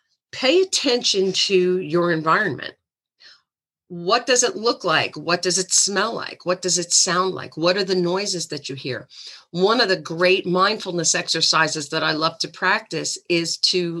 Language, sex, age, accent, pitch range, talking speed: English, female, 50-69, American, 160-190 Hz, 170 wpm